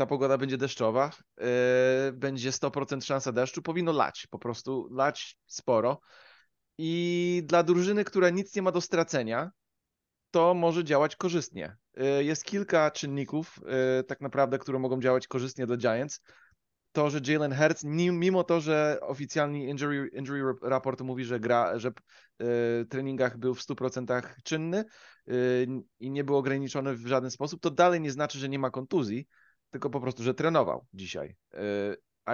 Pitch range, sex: 125-155 Hz, male